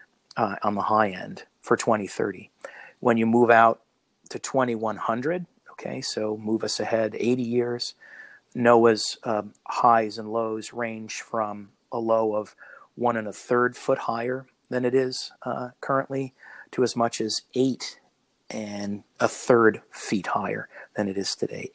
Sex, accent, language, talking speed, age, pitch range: male, American, English, 150 wpm, 40-59, 110-125 Hz